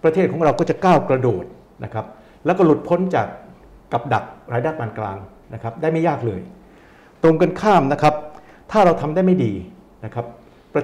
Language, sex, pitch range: Thai, male, 120-175 Hz